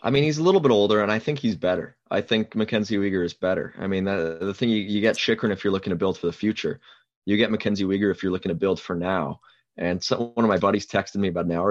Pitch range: 90-110 Hz